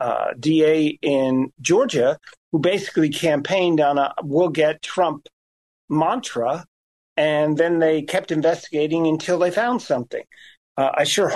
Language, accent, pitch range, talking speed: English, American, 145-180 Hz, 130 wpm